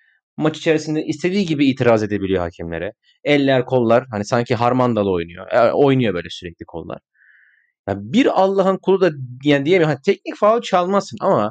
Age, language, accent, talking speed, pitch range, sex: 30-49, Turkish, native, 150 wpm, 105-170 Hz, male